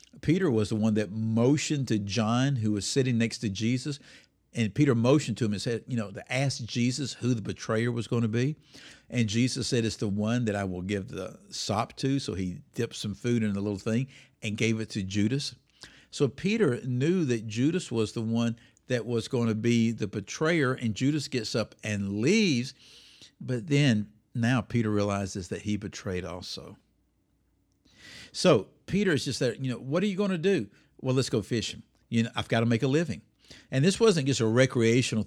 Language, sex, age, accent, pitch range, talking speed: English, male, 50-69, American, 110-140 Hz, 205 wpm